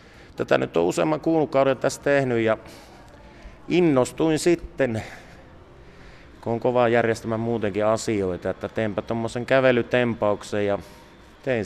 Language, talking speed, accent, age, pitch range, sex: Finnish, 120 wpm, native, 30-49, 100-120 Hz, male